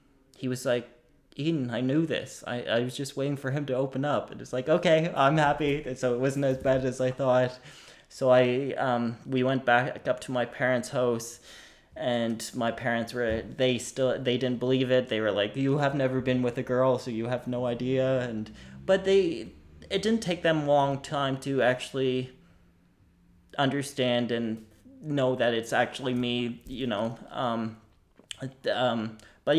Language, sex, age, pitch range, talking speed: English, male, 20-39, 120-140 Hz, 185 wpm